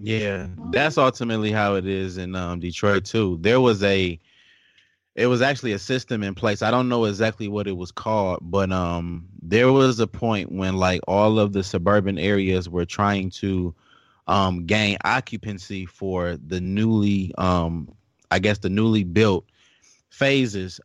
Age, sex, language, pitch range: 20-39, male, English, 90-105 Hz